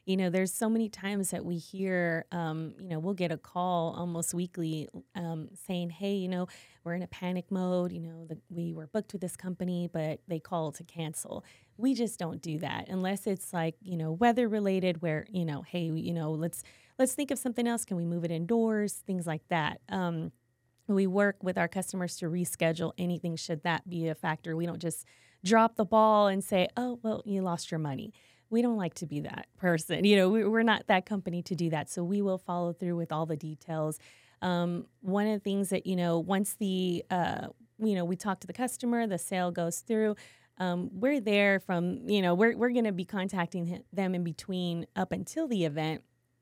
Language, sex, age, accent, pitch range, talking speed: English, female, 20-39, American, 170-205 Hz, 215 wpm